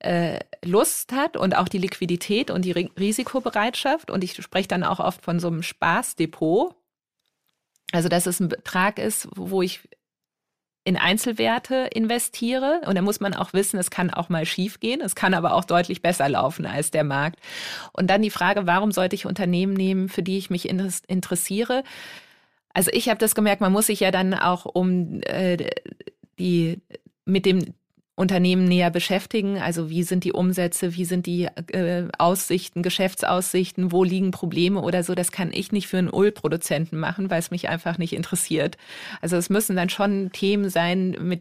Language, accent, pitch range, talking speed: German, German, 175-195 Hz, 175 wpm